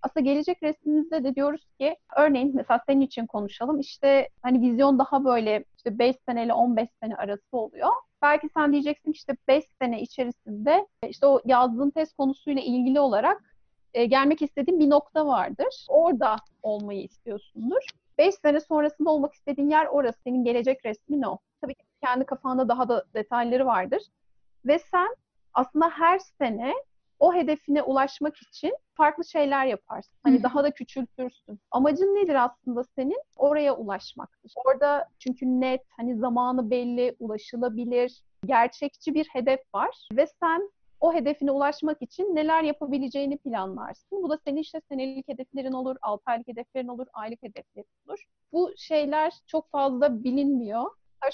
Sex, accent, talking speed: female, native, 145 wpm